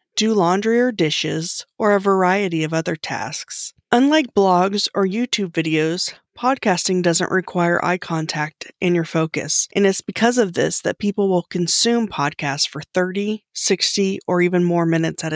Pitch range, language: 165-205 Hz, English